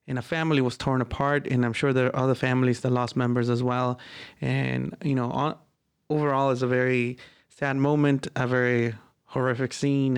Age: 30-49